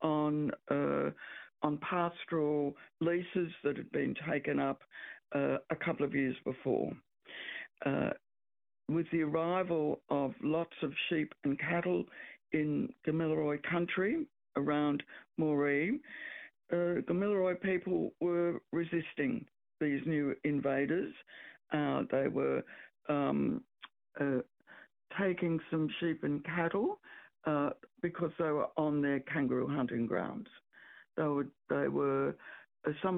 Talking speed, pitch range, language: 110 wpm, 145-175 Hz, English